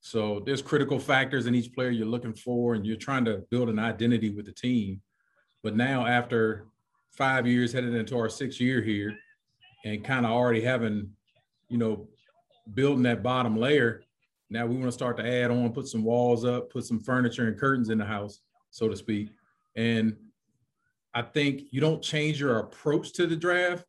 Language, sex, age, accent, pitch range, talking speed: English, male, 40-59, American, 110-130 Hz, 190 wpm